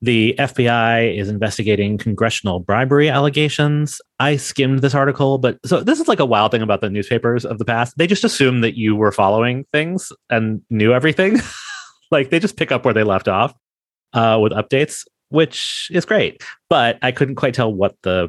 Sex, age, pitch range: male, 30-49, 100-135 Hz